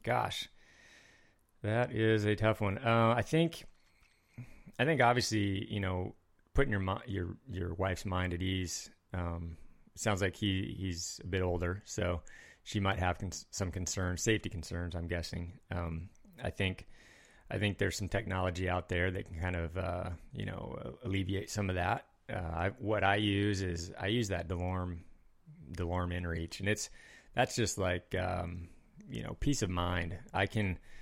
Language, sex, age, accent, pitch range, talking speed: English, male, 30-49, American, 90-110 Hz, 170 wpm